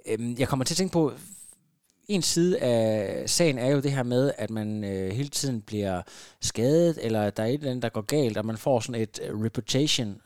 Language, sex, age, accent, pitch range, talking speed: Danish, male, 20-39, native, 110-140 Hz, 215 wpm